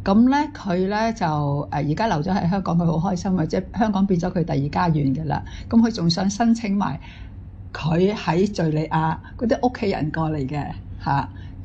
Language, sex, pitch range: Chinese, female, 160-230 Hz